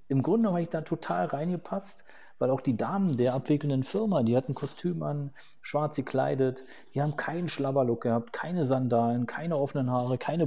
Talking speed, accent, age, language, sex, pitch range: 180 wpm, German, 40-59, German, male, 115-150 Hz